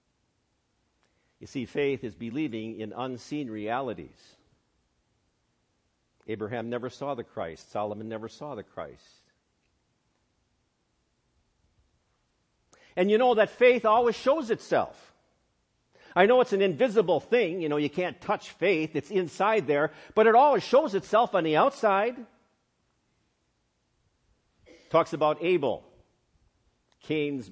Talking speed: 115 wpm